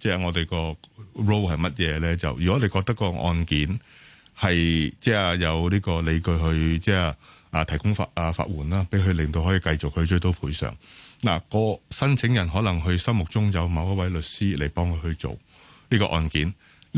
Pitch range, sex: 80-105 Hz, male